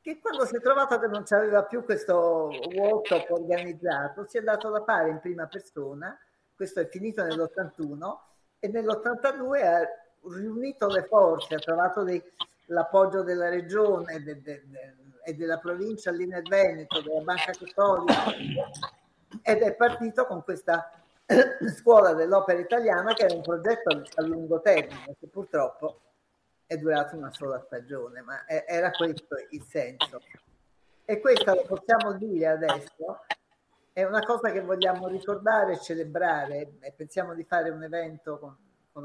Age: 50-69